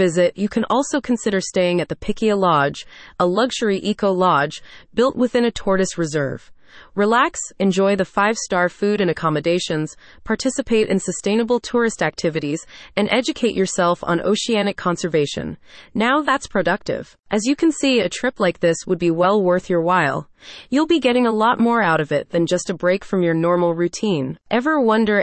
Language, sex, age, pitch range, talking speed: English, female, 30-49, 170-235 Hz, 170 wpm